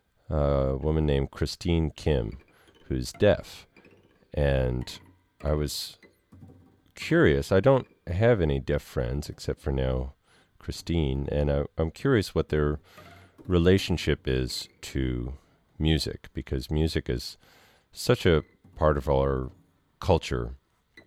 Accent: American